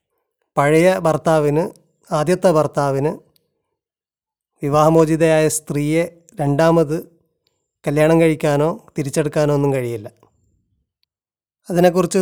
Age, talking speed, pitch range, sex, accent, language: 30-49, 65 wpm, 150-175 Hz, male, native, Malayalam